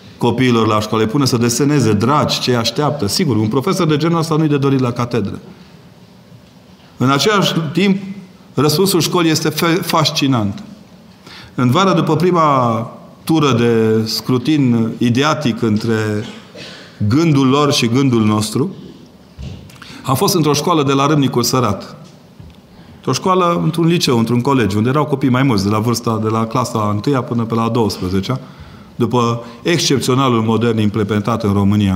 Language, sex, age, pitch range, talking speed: Romanian, male, 40-59, 115-165 Hz, 145 wpm